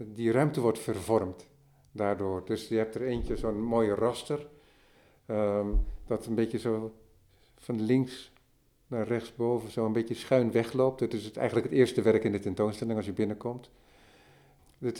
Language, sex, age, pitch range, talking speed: Dutch, male, 50-69, 110-125 Hz, 155 wpm